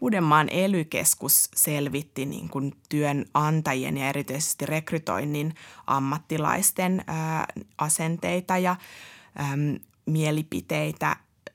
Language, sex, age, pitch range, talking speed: Finnish, female, 20-39, 145-170 Hz, 70 wpm